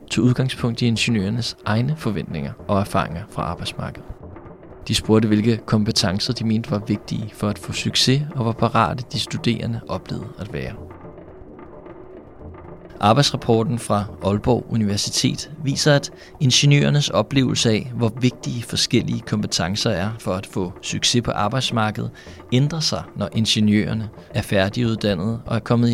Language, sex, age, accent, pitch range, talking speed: Danish, male, 20-39, native, 100-120 Hz, 135 wpm